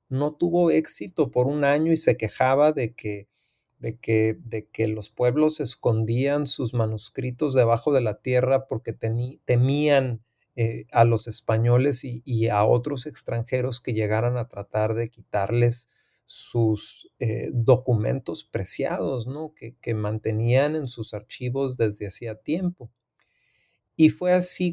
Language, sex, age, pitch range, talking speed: Spanish, male, 40-59, 115-135 Hz, 140 wpm